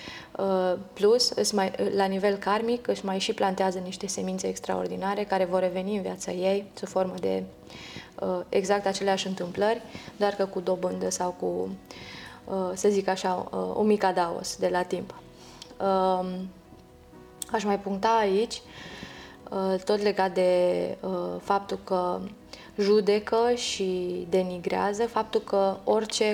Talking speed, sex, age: 125 wpm, female, 20-39